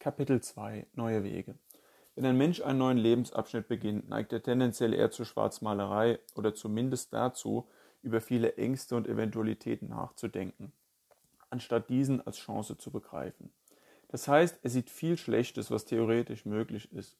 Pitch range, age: 115-140 Hz, 30-49